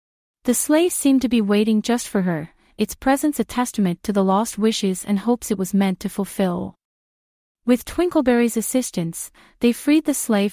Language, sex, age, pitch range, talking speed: English, female, 30-49, 195-245 Hz, 175 wpm